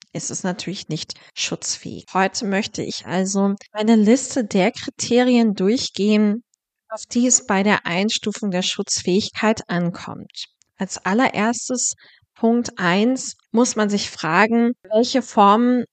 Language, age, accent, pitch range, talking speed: German, 20-39, German, 195-240 Hz, 125 wpm